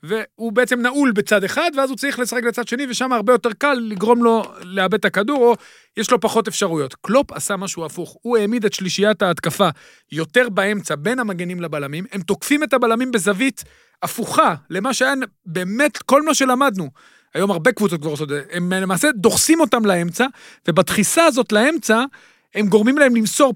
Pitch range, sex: 185-240 Hz, male